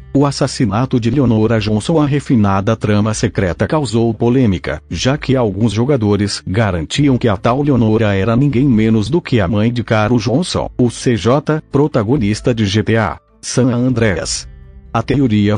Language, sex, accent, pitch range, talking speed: Portuguese, male, Brazilian, 105-135 Hz, 150 wpm